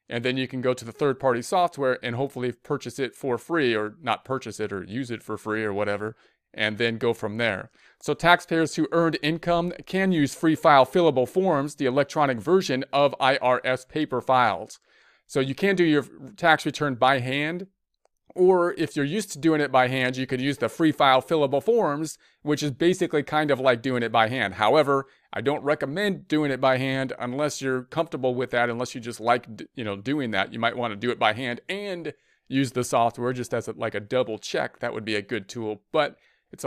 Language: English